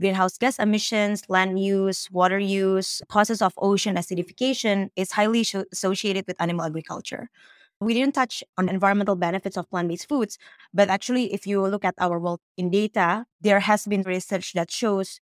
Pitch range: 185-215 Hz